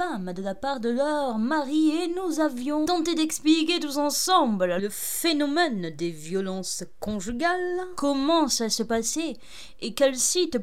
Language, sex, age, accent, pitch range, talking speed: French, female, 30-49, French, 225-320 Hz, 140 wpm